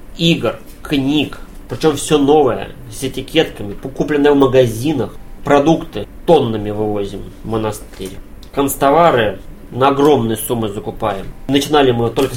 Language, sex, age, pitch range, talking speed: Russian, male, 20-39, 115-145 Hz, 110 wpm